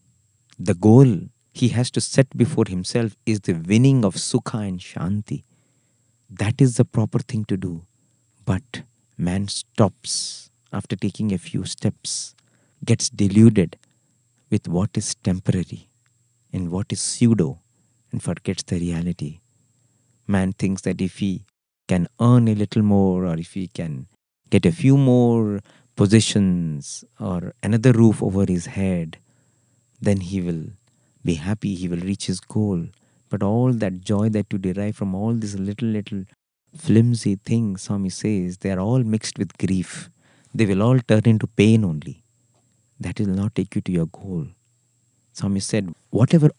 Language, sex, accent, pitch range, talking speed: English, male, Indian, 95-120 Hz, 155 wpm